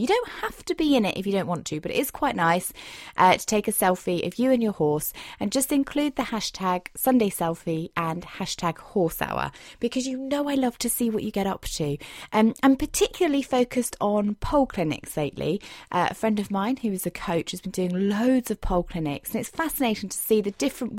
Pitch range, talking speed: 180-260 Hz, 235 wpm